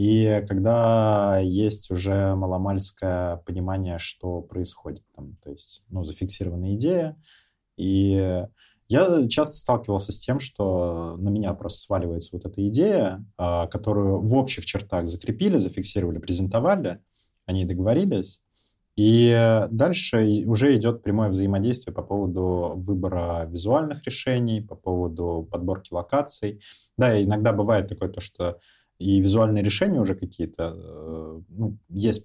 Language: Russian